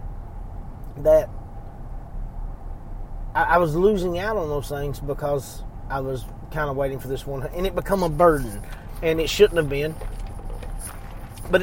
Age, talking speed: 30-49, 145 wpm